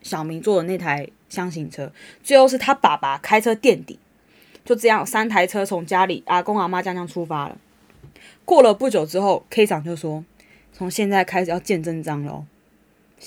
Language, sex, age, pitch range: Chinese, female, 20-39, 175-235 Hz